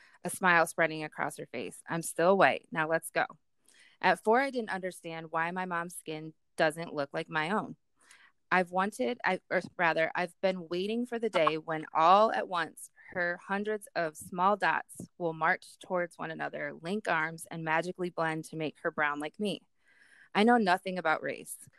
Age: 20-39